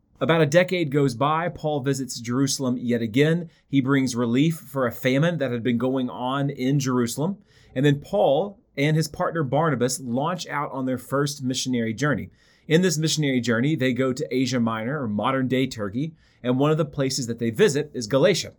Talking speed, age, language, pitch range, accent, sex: 190 wpm, 30-49, English, 125-160 Hz, American, male